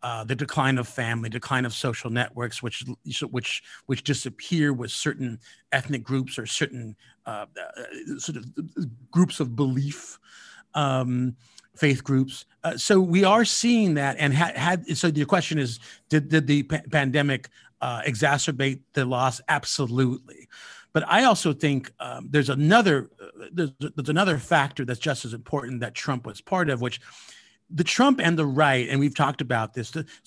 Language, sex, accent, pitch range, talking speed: English, male, American, 125-160 Hz, 165 wpm